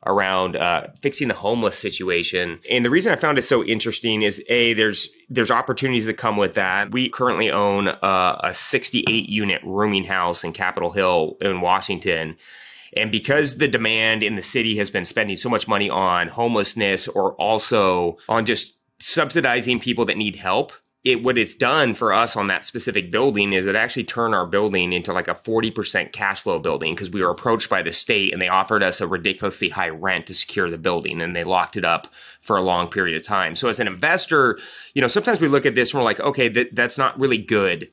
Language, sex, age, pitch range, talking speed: English, male, 30-49, 95-115 Hz, 205 wpm